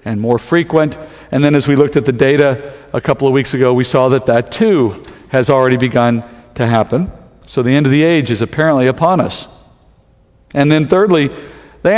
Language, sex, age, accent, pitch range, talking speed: English, male, 50-69, American, 130-170 Hz, 200 wpm